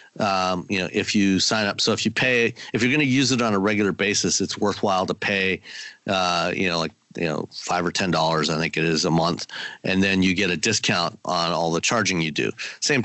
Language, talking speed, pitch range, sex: English, 245 wpm, 90-110 Hz, male